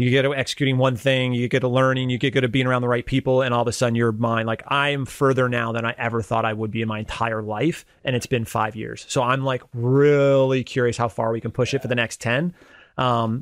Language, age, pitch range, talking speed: English, 30-49, 115-130 Hz, 280 wpm